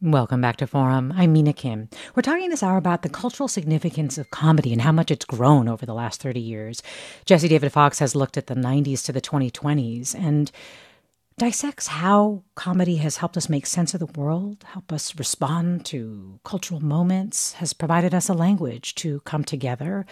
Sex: female